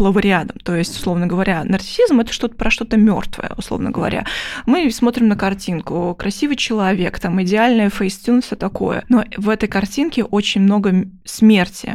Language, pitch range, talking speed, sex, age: Russian, 190-230 Hz, 155 wpm, female, 20-39